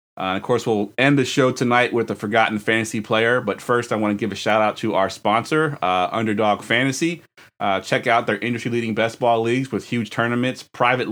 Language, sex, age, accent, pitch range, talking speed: English, male, 30-49, American, 105-120 Hz, 220 wpm